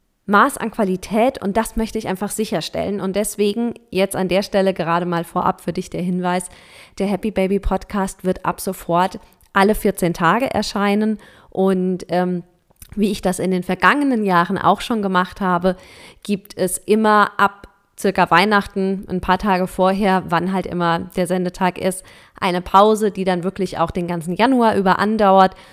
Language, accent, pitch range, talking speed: German, German, 180-220 Hz, 170 wpm